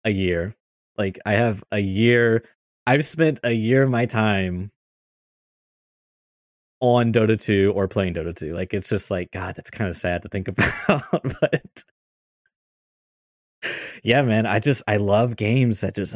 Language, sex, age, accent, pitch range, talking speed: English, male, 20-39, American, 90-115 Hz, 160 wpm